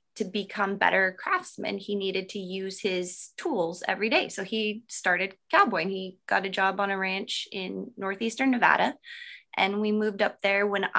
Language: English